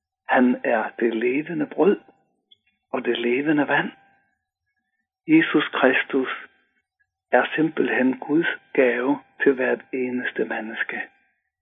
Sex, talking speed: male, 100 wpm